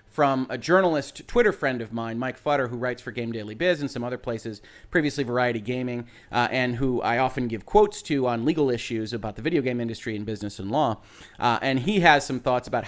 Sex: male